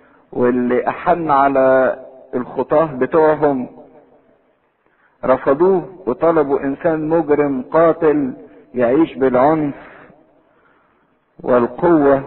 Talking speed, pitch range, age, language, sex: 65 wpm, 125-150 Hz, 50-69, English, male